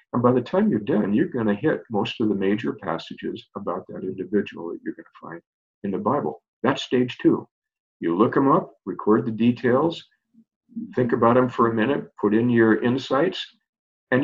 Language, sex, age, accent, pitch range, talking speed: English, male, 50-69, American, 105-130 Hz, 200 wpm